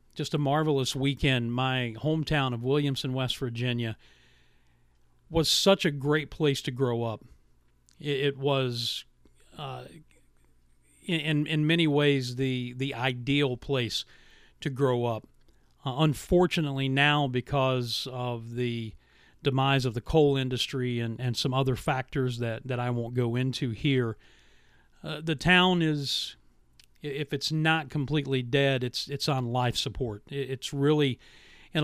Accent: American